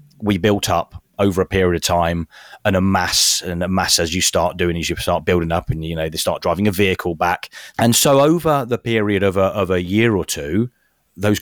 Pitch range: 85-105 Hz